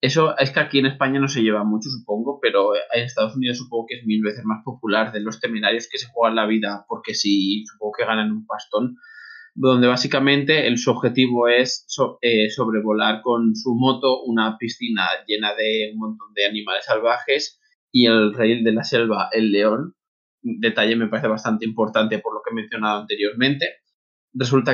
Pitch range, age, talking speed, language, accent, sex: 110-135 Hz, 20-39, 180 wpm, Spanish, Spanish, male